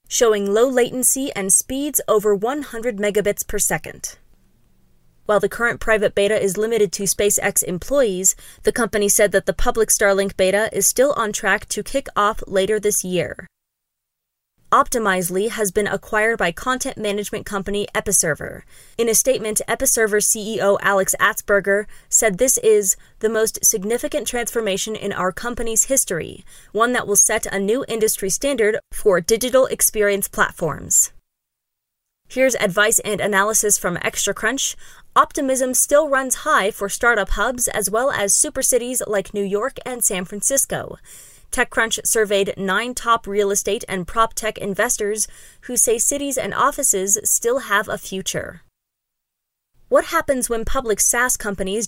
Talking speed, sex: 145 wpm, female